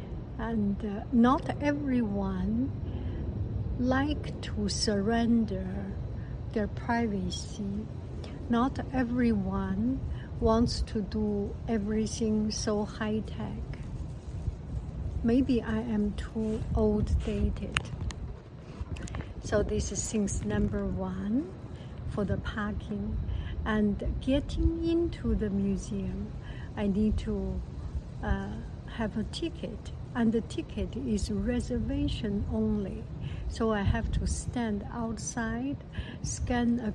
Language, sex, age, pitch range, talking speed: English, female, 60-79, 155-235 Hz, 95 wpm